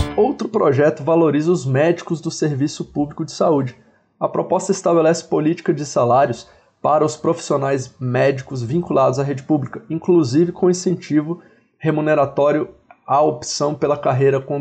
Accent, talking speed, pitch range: Brazilian, 135 wpm, 130-165 Hz